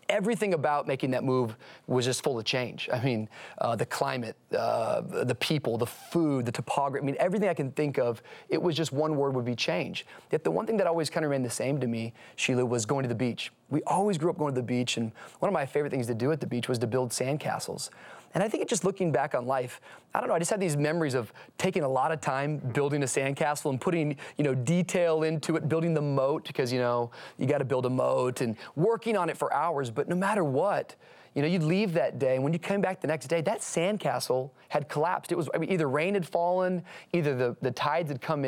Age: 30-49